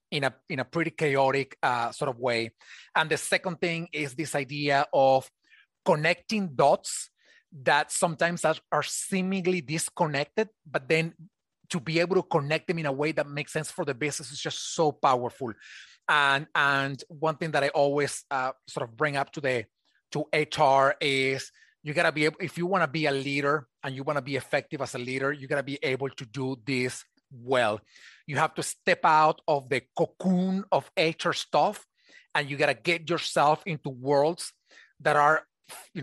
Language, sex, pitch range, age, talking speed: English, male, 135-165 Hz, 30-49, 185 wpm